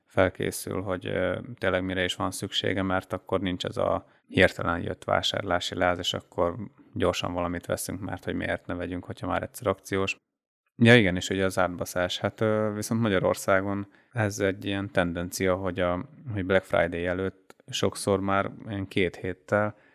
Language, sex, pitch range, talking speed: Hungarian, male, 90-100 Hz, 155 wpm